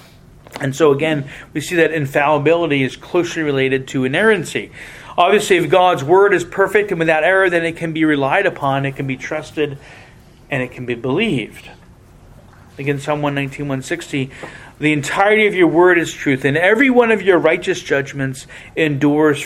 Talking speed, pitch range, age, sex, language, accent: 165 wpm, 130-170 Hz, 40-59, male, English, American